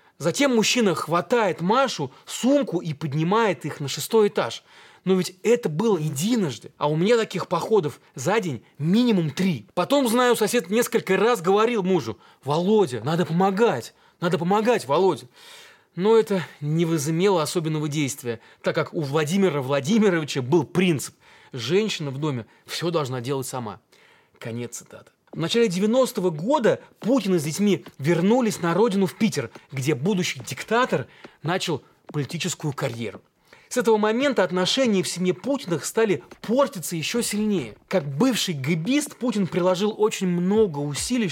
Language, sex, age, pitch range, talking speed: Russian, male, 30-49, 155-215 Hz, 140 wpm